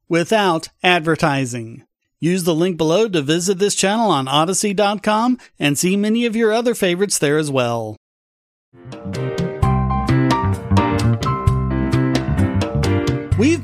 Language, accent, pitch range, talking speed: English, American, 160-225 Hz, 100 wpm